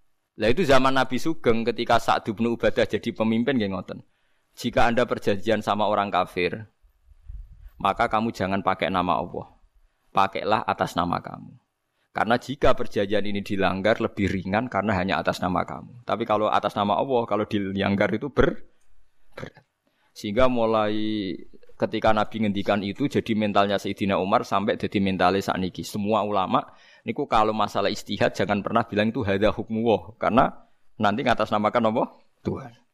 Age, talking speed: 20-39, 145 wpm